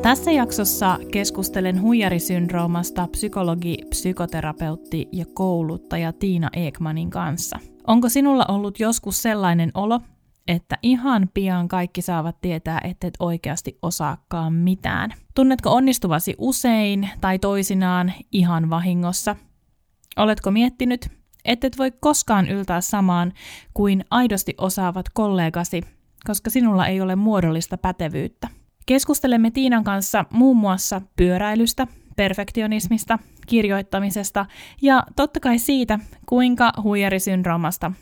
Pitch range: 175-225 Hz